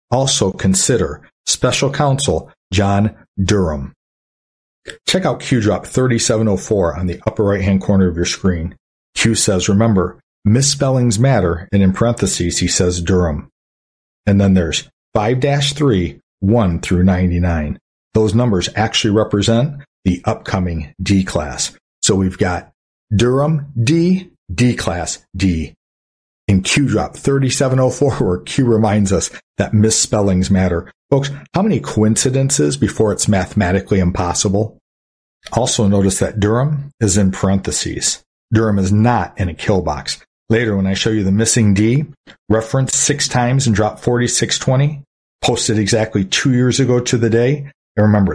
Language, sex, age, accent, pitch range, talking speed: English, male, 50-69, American, 95-125 Hz, 140 wpm